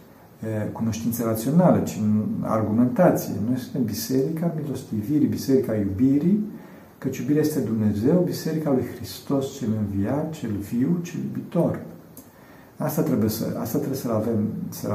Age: 50-69